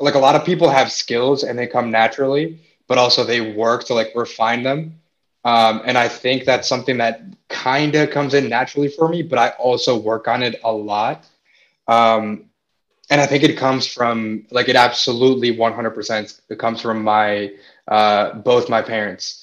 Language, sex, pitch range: English, male, 115-135 Hz